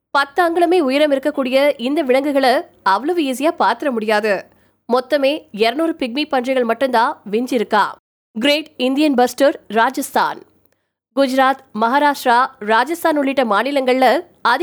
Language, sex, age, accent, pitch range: Tamil, female, 20-39, native, 240-290 Hz